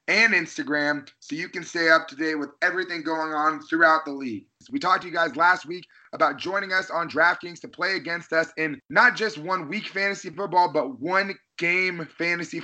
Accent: American